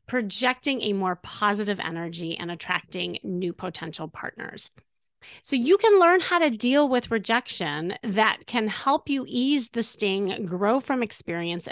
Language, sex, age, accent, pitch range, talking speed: English, female, 30-49, American, 195-265 Hz, 150 wpm